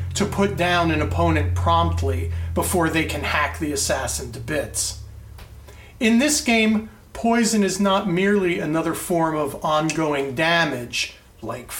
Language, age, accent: English, 40-59, American